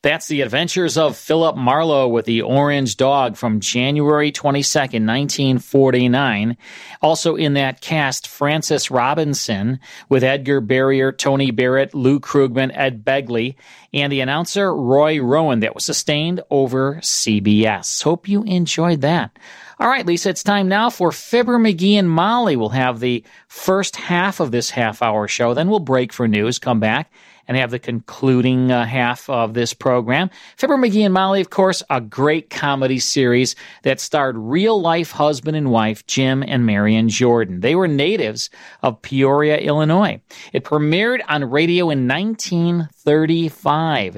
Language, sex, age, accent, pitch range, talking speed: English, male, 40-59, American, 125-165 Hz, 150 wpm